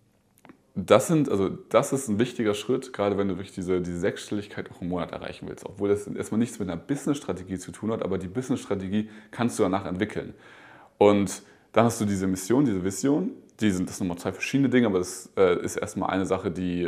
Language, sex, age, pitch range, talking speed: German, male, 20-39, 95-115 Hz, 215 wpm